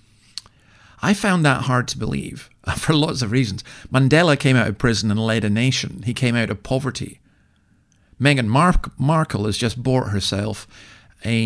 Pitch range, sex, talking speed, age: 105-135 Hz, male, 160 wpm, 50-69